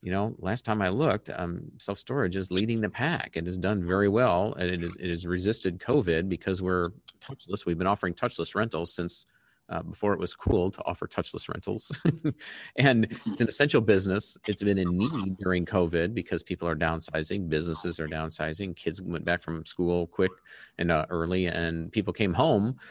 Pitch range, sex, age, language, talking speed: 85-105 Hz, male, 40-59, English, 190 wpm